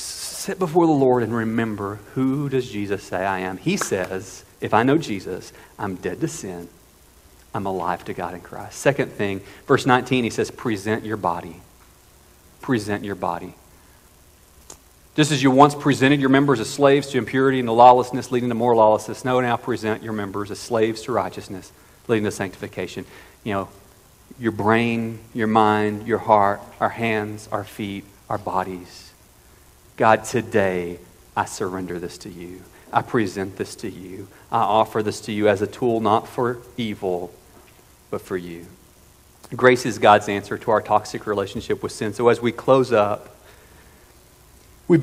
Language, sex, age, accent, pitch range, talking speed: English, male, 40-59, American, 95-125 Hz, 170 wpm